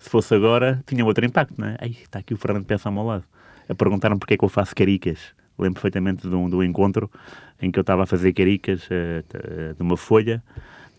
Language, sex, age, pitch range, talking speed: Portuguese, male, 30-49, 90-115 Hz, 245 wpm